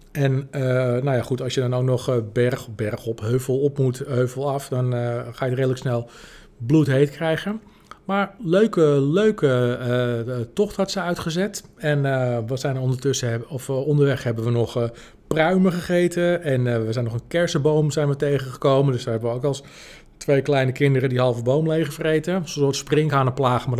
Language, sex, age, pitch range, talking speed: Dutch, male, 40-59, 125-155 Hz, 190 wpm